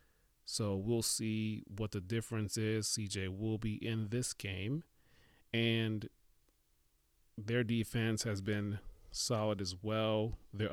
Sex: male